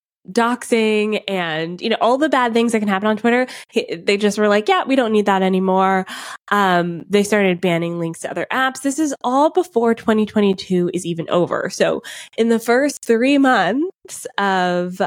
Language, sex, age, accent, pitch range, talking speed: English, female, 20-39, American, 185-245 Hz, 185 wpm